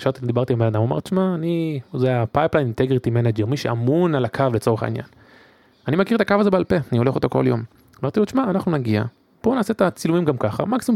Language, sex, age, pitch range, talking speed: Hebrew, male, 20-39, 120-150 Hz, 225 wpm